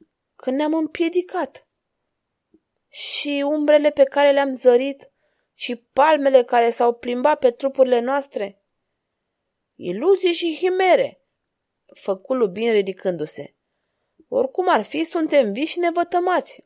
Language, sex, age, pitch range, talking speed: Romanian, female, 20-39, 205-300 Hz, 105 wpm